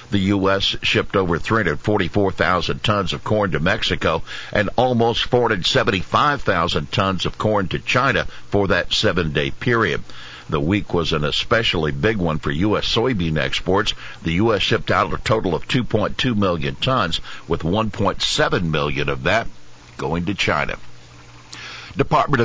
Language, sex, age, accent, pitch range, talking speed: English, male, 60-79, American, 85-110 Hz, 140 wpm